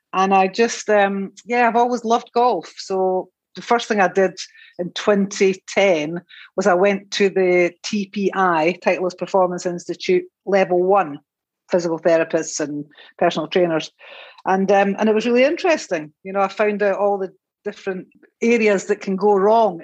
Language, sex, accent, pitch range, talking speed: English, female, British, 180-210 Hz, 160 wpm